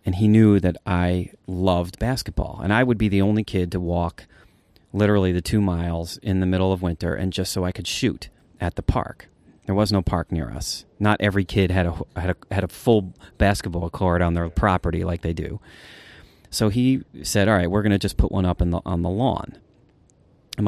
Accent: American